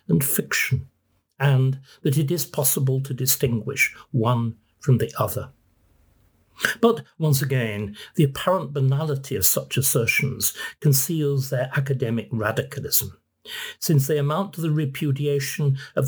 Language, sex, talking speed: English, male, 125 wpm